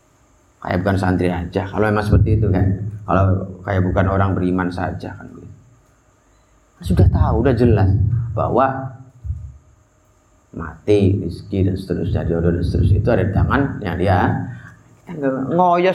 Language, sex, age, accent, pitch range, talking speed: Indonesian, male, 30-49, native, 95-135 Hz, 130 wpm